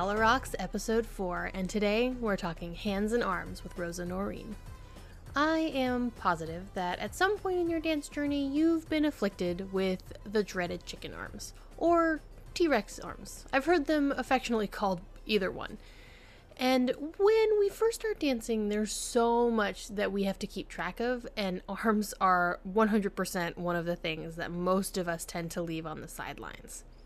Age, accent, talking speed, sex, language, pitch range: 10-29, American, 170 wpm, female, English, 185-260 Hz